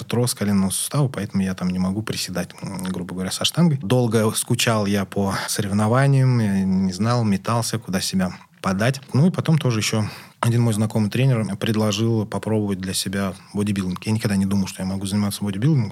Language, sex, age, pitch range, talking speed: Russian, male, 20-39, 95-115 Hz, 175 wpm